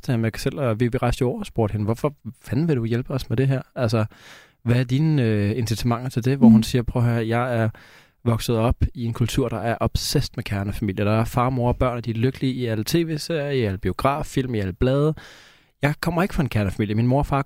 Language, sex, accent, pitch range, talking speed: Danish, male, native, 115-130 Hz, 240 wpm